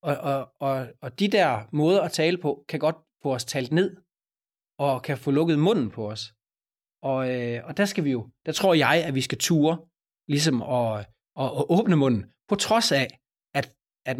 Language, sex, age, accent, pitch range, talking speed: Danish, male, 30-49, native, 125-170 Hz, 190 wpm